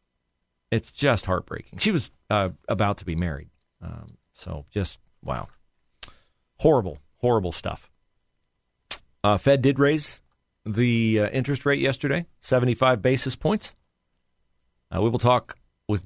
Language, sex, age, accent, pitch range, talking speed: English, male, 40-59, American, 100-135 Hz, 125 wpm